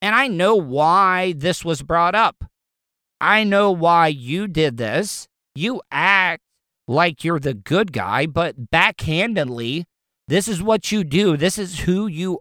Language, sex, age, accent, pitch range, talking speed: English, male, 50-69, American, 140-195 Hz, 155 wpm